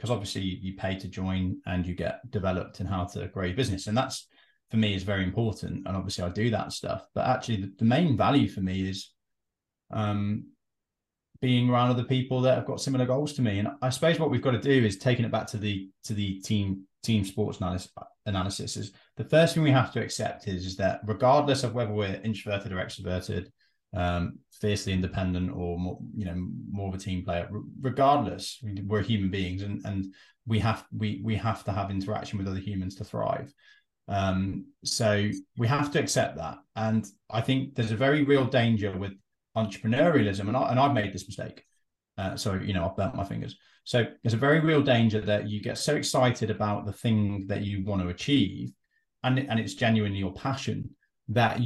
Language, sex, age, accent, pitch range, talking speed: English, male, 20-39, British, 95-125 Hz, 210 wpm